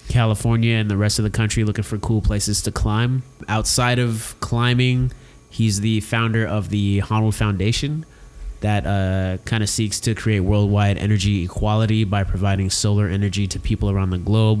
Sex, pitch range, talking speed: male, 100-115 Hz, 175 wpm